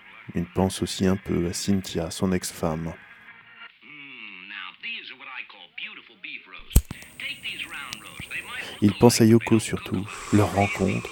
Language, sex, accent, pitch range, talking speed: French, male, French, 95-105 Hz, 85 wpm